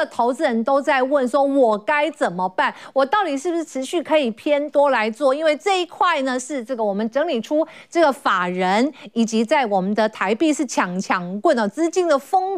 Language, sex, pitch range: Chinese, female, 225-315 Hz